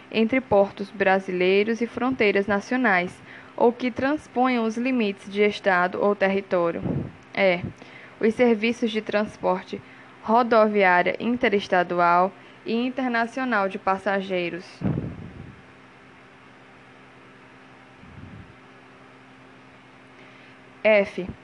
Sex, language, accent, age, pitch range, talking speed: female, Portuguese, Brazilian, 20-39, 180-225 Hz, 75 wpm